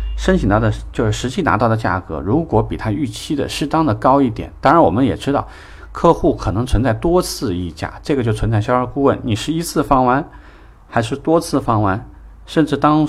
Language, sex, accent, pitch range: Chinese, male, native, 95-130 Hz